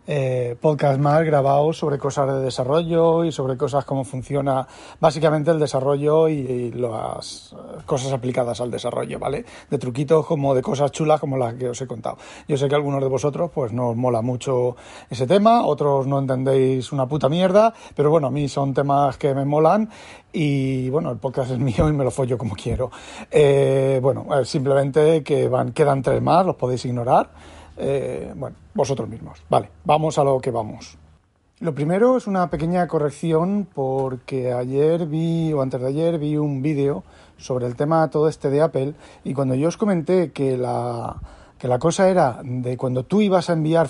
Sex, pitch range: male, 130-160 Hz